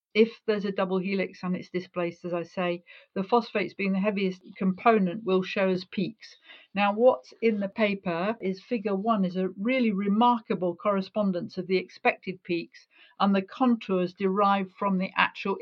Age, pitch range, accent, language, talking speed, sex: 50-69, 185-220 Hz, British, English, 175 wpm, female